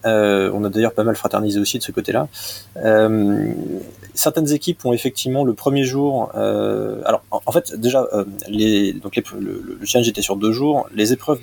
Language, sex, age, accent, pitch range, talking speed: French, male, 20-39, French, 100-125 Hz, 200 wpm